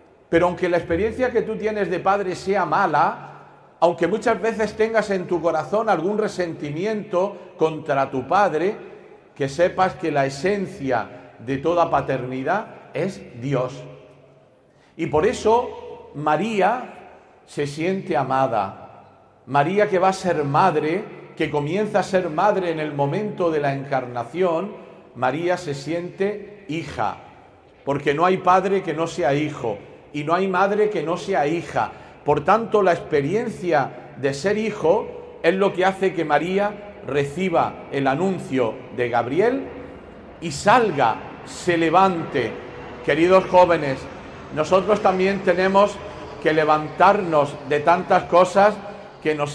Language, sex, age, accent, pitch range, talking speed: Spanish, male, 50-69, Spanish, 145-195 Hz, 135 wpm